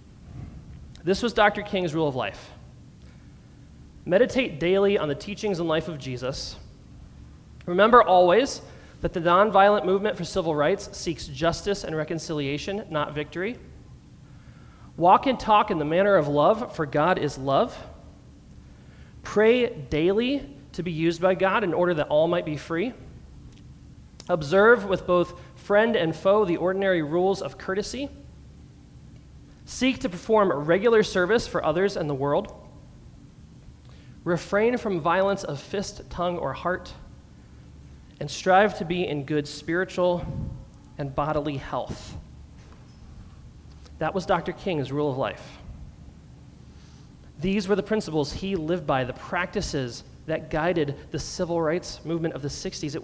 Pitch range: 145-195 Hz